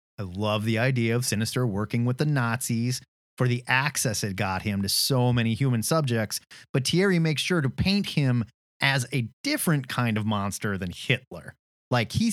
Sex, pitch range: male, 105-145 Hz